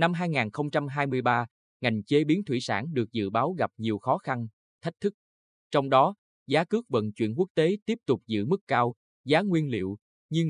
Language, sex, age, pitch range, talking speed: Vietnamese, male, 20-39, 110-155 Hz, 190 wpm